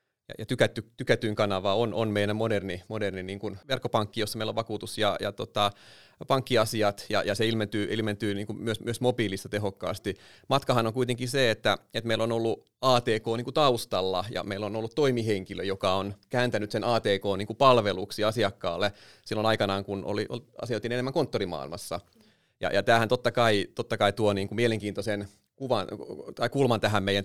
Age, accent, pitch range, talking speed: 30-49, native, 100-120 Hz, 170 wpm